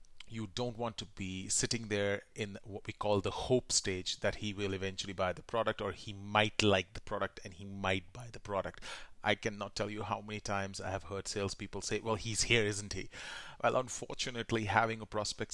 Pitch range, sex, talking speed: 100-115 Hz, male, 210 wpm